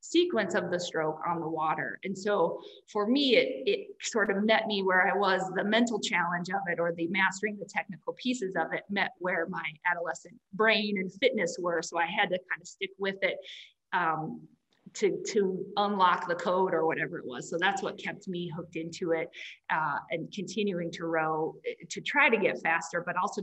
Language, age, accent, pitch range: English, 20-39, American, 175-220 Hz